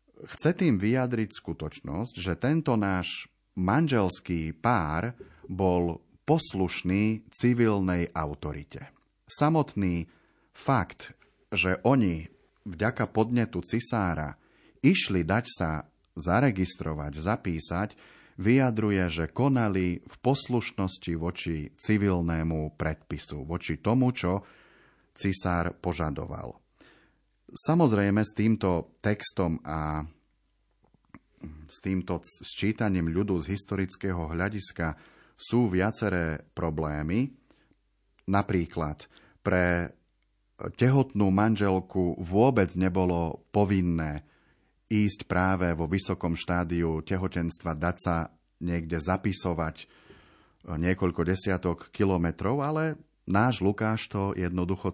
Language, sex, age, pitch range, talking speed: Slovak, male, 30-49, 85-105 Hz, 85 wpm